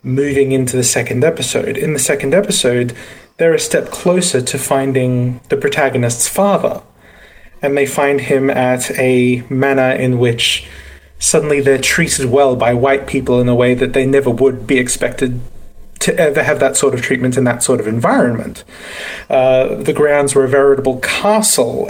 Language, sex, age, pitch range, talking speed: English, male, 30-49, 125-140 Hz, 170 wpm